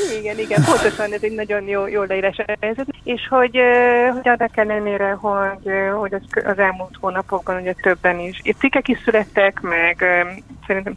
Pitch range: 180-215 Hz